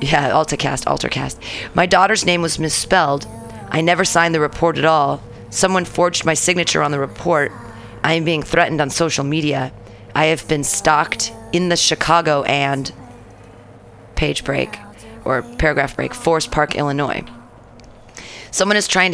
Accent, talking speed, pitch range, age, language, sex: American, 150 wpm, 130-170 Hz, 40-59, English, female